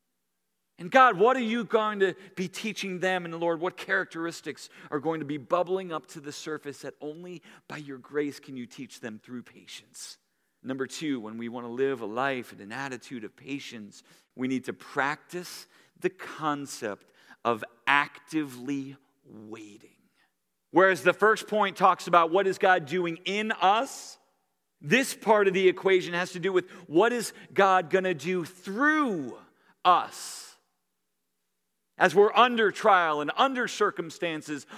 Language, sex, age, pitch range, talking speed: English, male, 40-59, 140-195 Hz, 160 wpm